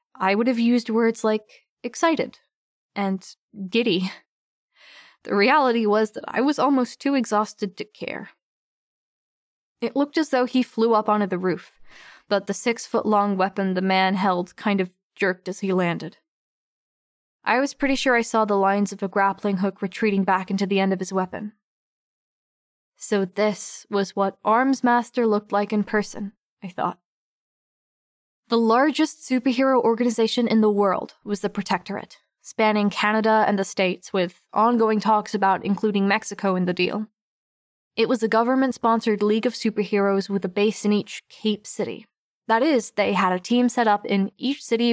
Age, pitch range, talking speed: 10-29, 195-230 Hz, 165 wpm